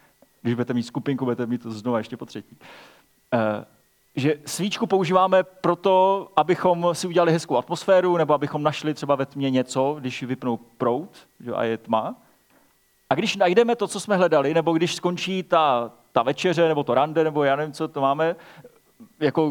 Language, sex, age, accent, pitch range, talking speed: Czech, male, 30-49, native, 130-170 Hz, 180 wpm